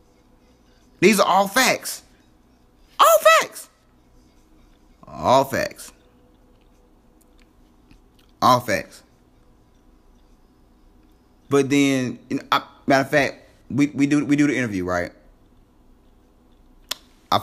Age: 30-49